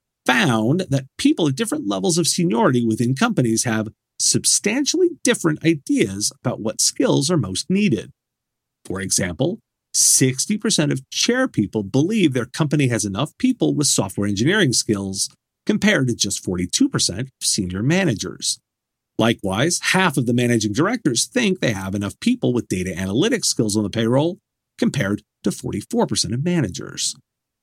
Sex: male